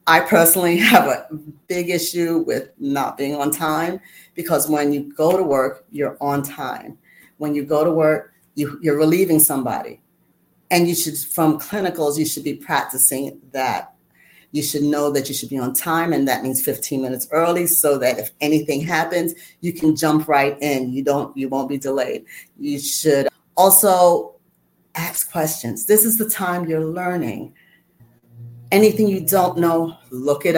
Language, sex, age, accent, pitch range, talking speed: English, female, 40-59, American, 145-195 Hz, 170 wpm